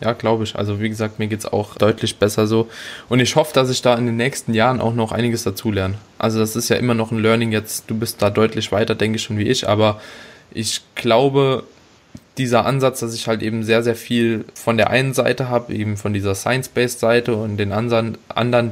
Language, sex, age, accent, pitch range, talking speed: German, male, 20-39, German, 105-120 Hz, 230 wpm